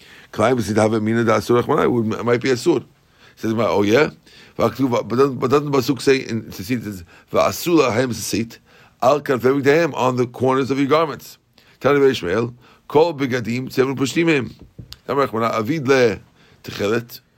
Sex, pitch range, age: male, 115-140 Hz, 50-69